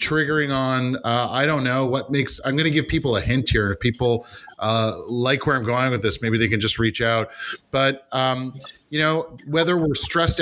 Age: 30-49